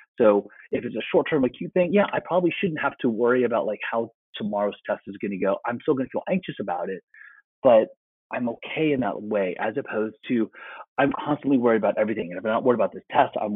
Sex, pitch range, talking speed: male, 100-130 Hz, 240 wpm